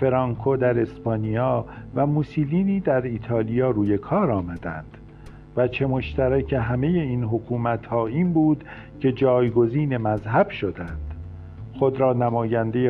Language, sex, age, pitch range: Persian, male, 50-69, 115-145 Hz